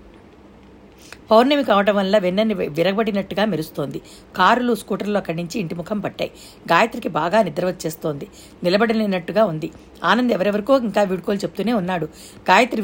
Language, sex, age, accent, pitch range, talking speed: Telugu, female, 60-79, native, 175-220 Hz, 115 wpm